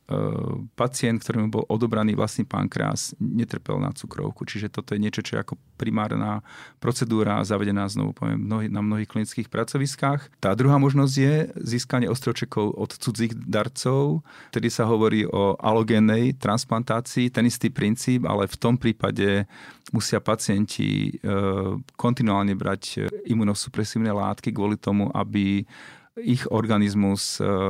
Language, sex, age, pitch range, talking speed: Slovak, male, 40-59, 105-125 Hz, 125 wpm